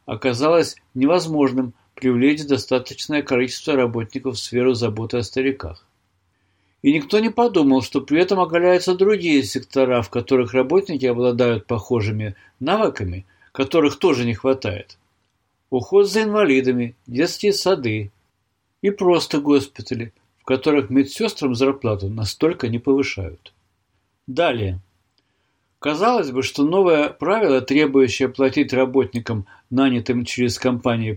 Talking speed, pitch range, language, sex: 110 wpm, 105-145 Hz, Russian, male